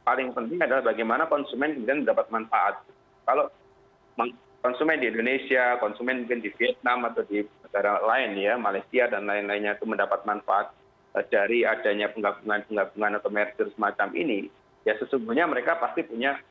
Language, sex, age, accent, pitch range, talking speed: Indonesian, male, 30-49, native, 105-130 Hz, 140 wpm